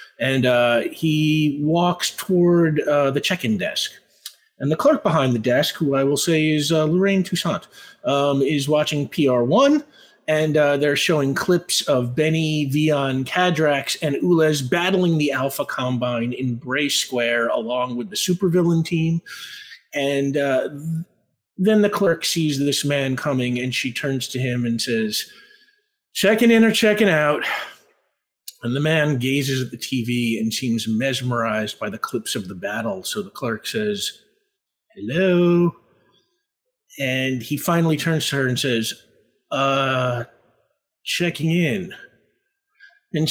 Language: English